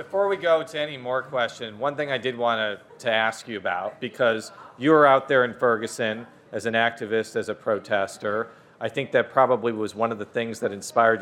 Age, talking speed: 40-59, 215 wpm